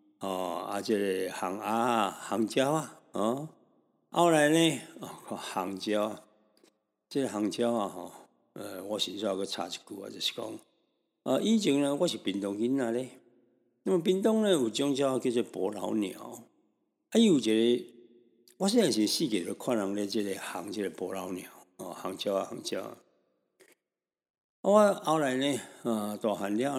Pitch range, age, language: 100-140 Hz, 60-79, Chinese